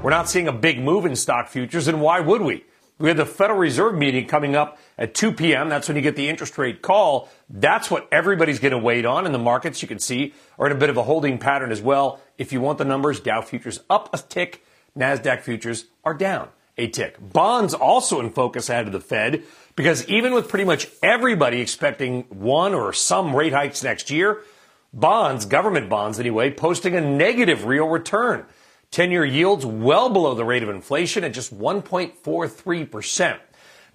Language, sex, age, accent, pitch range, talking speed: English, male, 40-59, American, 130-170 Hz, 200 wpm